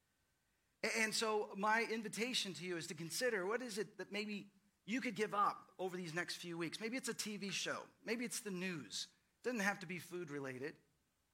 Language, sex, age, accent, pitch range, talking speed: English, male, 40-59, American, 145-190 Hz, 200 wpm